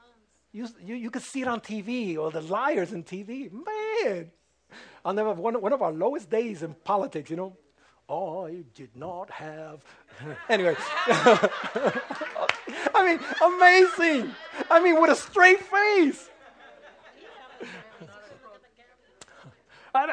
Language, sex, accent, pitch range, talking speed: English, male, American, 180-260 Hz, 125 wpm